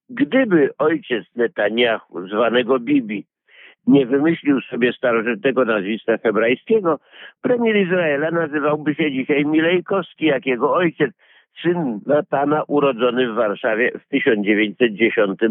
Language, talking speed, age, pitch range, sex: Polish, 105 wpm, 50-69, 115-150 Hz, male